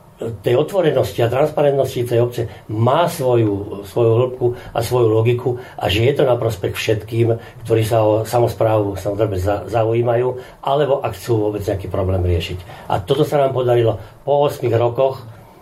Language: Slovak